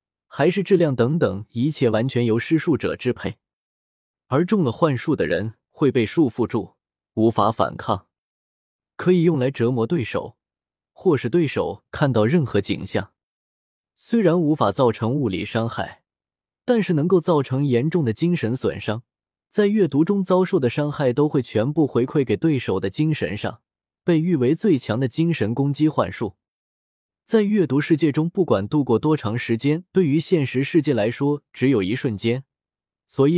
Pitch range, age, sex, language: 110-165 Hz, 20-39, male, Chinese